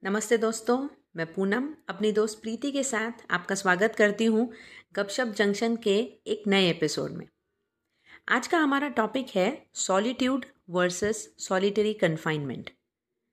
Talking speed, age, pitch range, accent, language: 130 wpm, 30-49, 180-235 Hz, native, Hindi